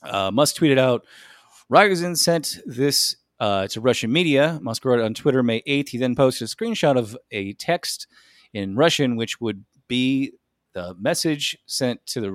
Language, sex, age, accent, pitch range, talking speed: English, male, 30-49, American, 105-140 Hz, 175 wpm